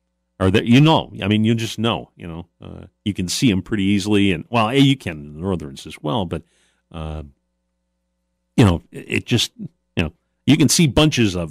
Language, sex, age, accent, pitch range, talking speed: English, male, 40-59, American, 85-120 Hz, 215 wpm